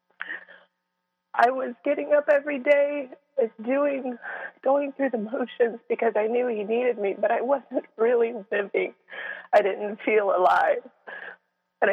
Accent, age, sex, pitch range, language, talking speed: American, 30-49, female, 185-265 Hz, English, 135 wpm